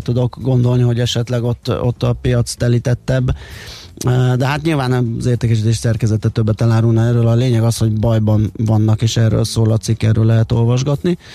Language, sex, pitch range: Hungarian, male, 110-125 Hz